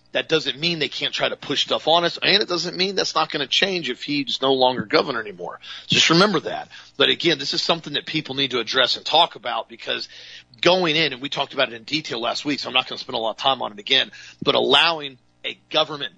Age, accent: 40-59, American